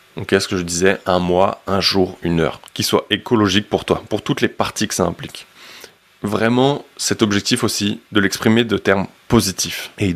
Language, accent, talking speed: French, French, 200 wpm